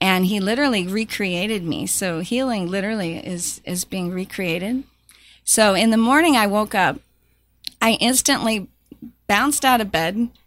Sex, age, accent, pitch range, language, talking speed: female, 40-59, American, 190-235 Hz, English, 145 wpm